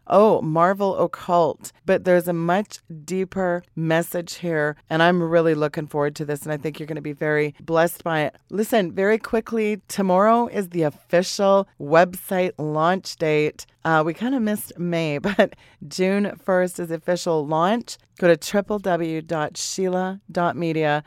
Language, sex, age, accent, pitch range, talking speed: English, female, 30-49, American, 155-185 Hz, 155 wpm